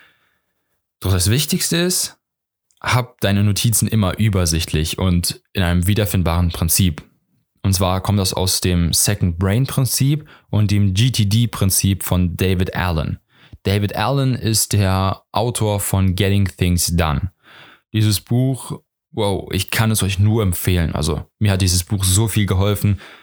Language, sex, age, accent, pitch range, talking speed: English, male, 10-29, German, 90-115 Hz, 145 wpm